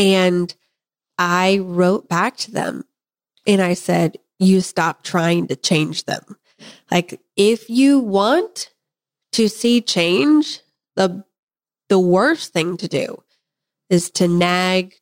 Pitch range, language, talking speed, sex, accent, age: 180-220 Hz, English, 125 wpm, female, American, 30-49